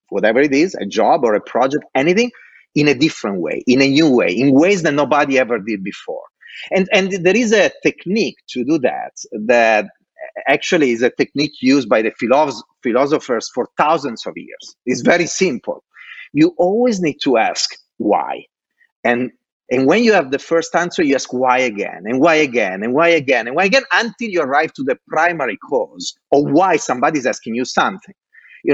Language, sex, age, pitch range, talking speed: English, male, 30-49, 145-225 Hz, 190 wpm